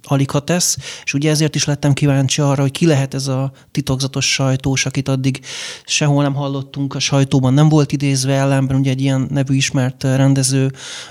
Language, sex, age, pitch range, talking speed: Hungarian, male, 30-49, 135-155 Hz, 175 wpm